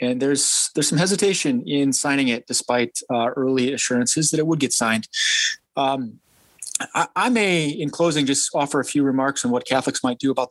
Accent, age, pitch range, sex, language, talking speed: American, 30-49, 125-165 Hz, male, English, 195 wpm